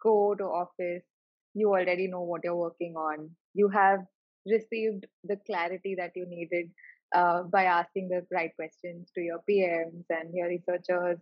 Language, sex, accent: English, female, Indian